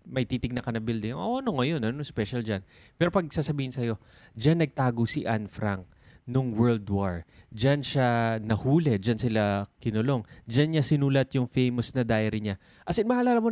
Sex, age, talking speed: male, 20-39, 195 wpm